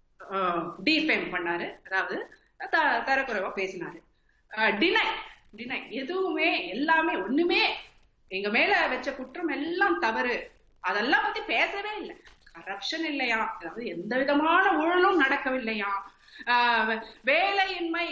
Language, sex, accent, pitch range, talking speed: Tamil, female, native, 225-325 Hz, 80 wpm